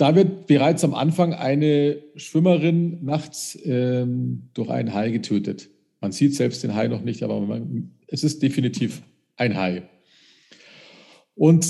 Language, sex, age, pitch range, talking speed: German, male, 50-69, 115-155 Hz, 145 wpm